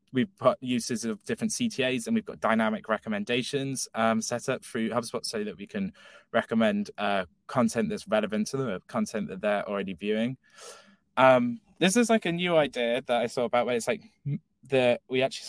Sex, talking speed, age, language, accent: male, 190 wpm, 10-29, English, British